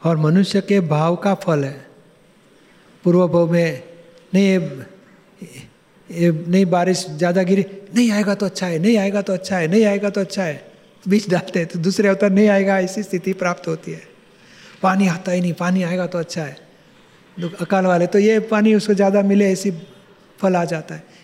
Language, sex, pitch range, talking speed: Gujarati, male, 170-195 Hz, 150 wpm